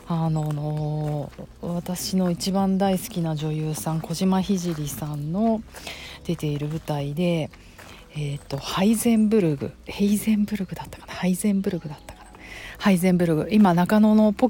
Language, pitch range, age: Japanese, 150-195 Hz, 40-59